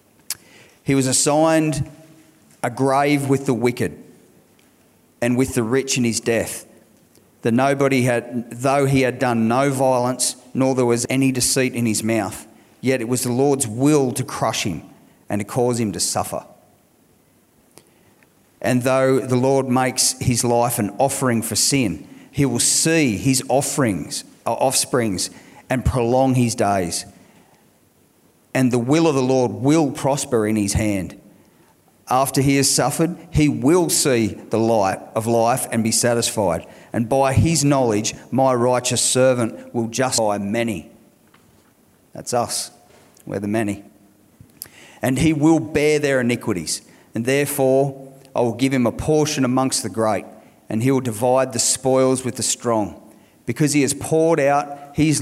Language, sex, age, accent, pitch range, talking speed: English, male, 40-59, Australian, 115-135 Hz, 155 wpm